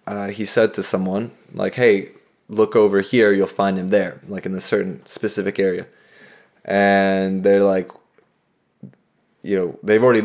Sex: male